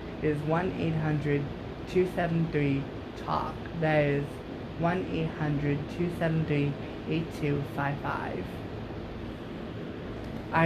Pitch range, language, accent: 140-165 Hz, English, American